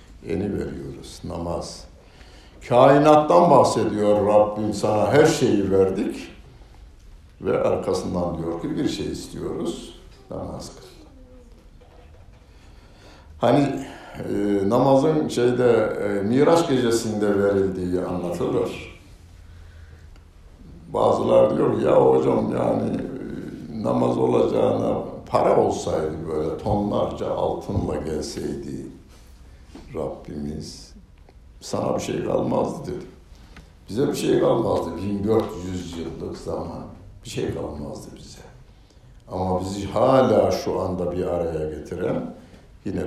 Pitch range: 75-100 Hz